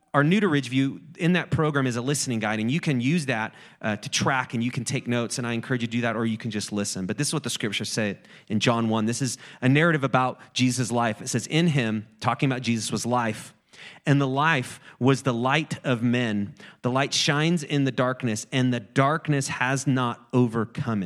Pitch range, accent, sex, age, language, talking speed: 110-135 Hz, American, male, 30-49, English, 235 wpm